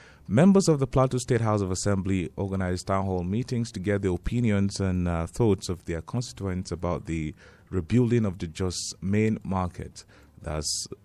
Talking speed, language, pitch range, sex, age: 170 wpm, English, 90-125 Hz, male, 30-49